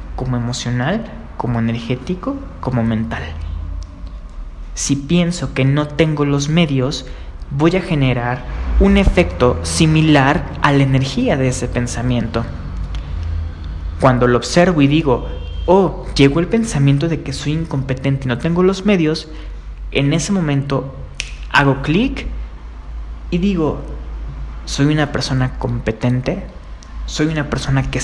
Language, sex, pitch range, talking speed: Spanish, male, 110-145 Hz, 125 wpm